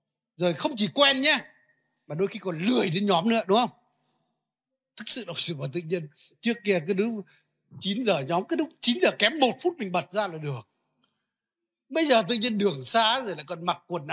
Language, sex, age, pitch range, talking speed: Vietnamese, male, 60-79, 175-240 Hz, 210 wpm